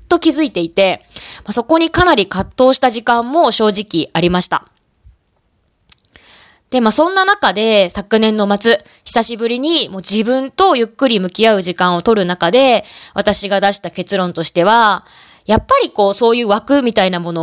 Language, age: Japanese, 20-39